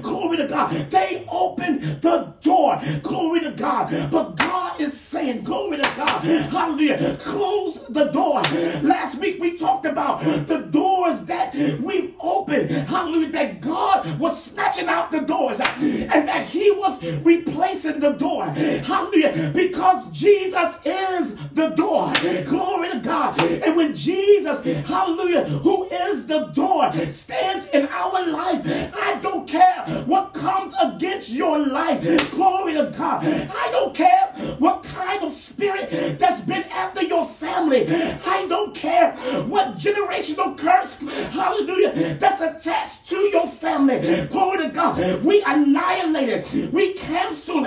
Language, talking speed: English, 140 wpm